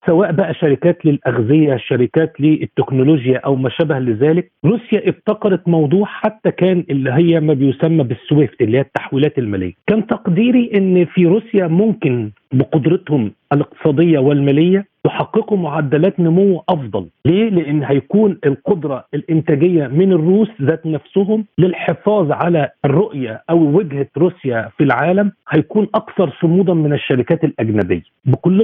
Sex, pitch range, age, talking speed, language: male, 145-185 Hz, 40-59, 130 wpm, Arabic